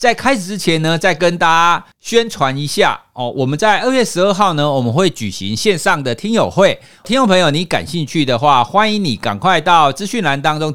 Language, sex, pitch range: Chinese, male, 135-215 Hz